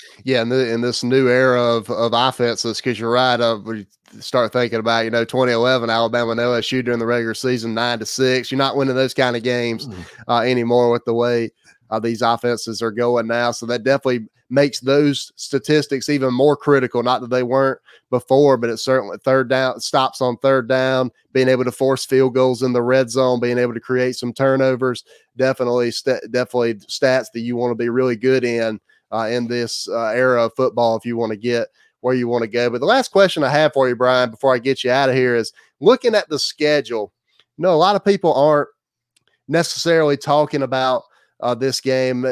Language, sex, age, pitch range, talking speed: English, male, 30-49, 120-135 Hz, 215 wpm